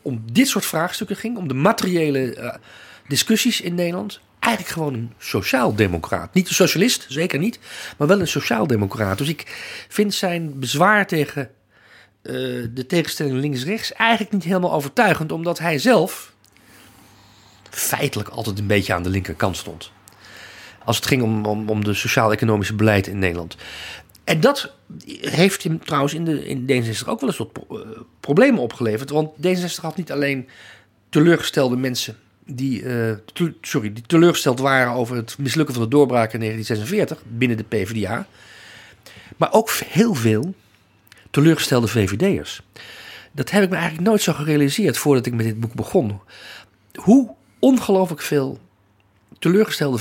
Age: 40-59